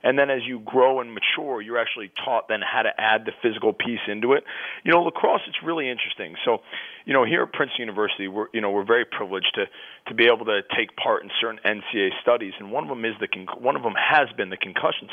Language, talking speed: English, 250 wpm